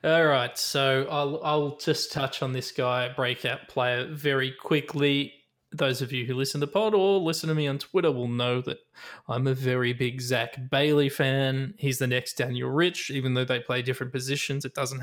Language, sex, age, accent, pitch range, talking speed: English, male, 20-39, Australian, 130-155 Hz, 205 wpm